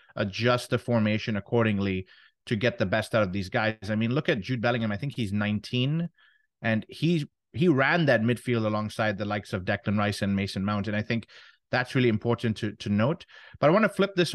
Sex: male